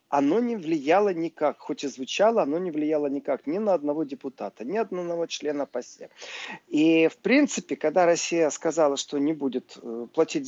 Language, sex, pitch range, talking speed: Russian, male, 150-230 Hz, 170 wpm